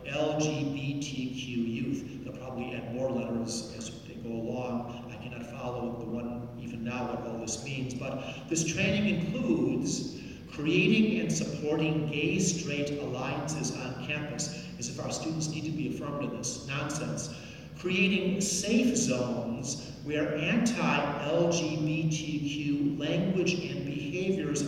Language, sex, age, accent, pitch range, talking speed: English, male, 50-69, American, 130-185 Hz, 125 wpm